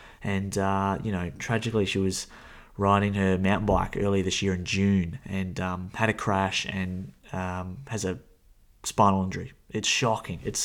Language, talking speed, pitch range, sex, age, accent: English, 170 wpm, 95-105 Hz, male, 20-39, Australian